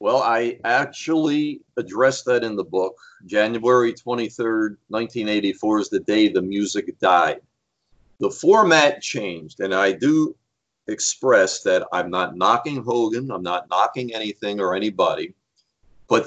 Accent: American